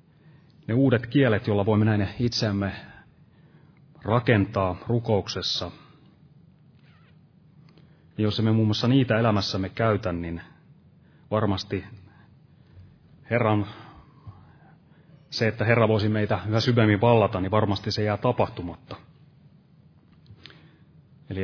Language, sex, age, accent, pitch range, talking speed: Finnish, male, 30-49, native, 105-150 Hz, 95 wpm